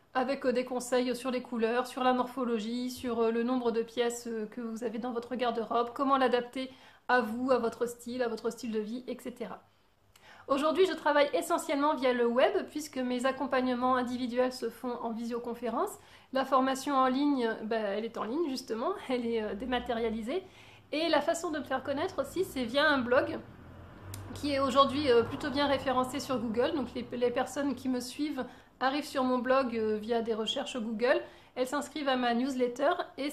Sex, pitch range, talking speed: female, 235-275 Hz, 180 wpm